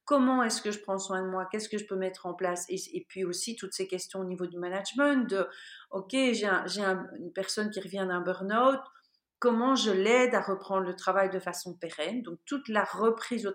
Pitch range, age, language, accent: 190-235 Hz, 40-59, French, French